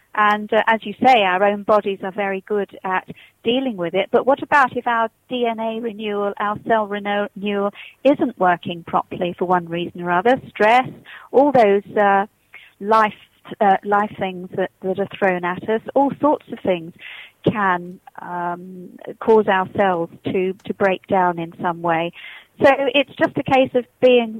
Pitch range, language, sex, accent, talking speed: 185-235 Hz, English, female, British, 170 wpm